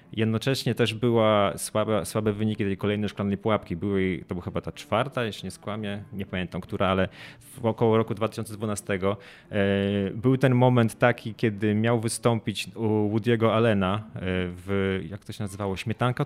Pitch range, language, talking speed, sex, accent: 100-115 Hz, Polish, 160 wpm, male, native